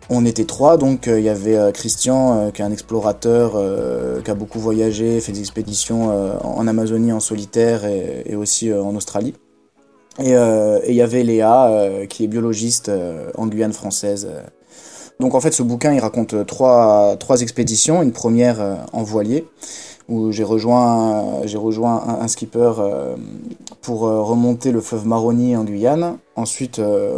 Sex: male